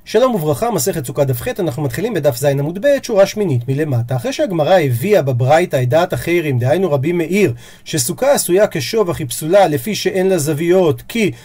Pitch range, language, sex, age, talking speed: 150-210 Hz, Hebrew, male, 40-59, 185 wpm